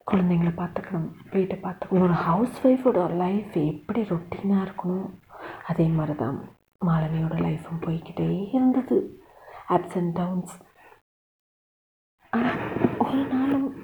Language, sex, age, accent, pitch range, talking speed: Tamil, female, 30-49, native, 165-210 Hz, 80 wpm